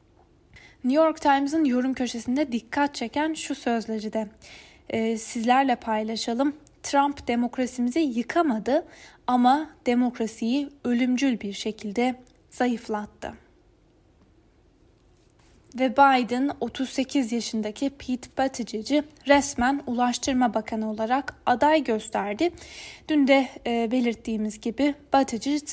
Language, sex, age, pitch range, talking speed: Turkish, female, 10-29, 230-290 Hz, 95 wpm